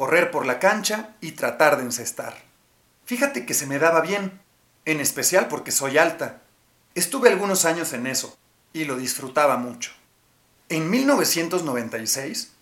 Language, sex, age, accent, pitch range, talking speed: Spanish, male, 40-59, Mexican, 135-195 Hz, 145 wpm